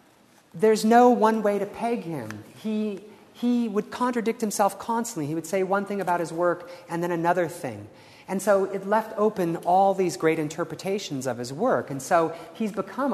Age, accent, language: 40-59, American, English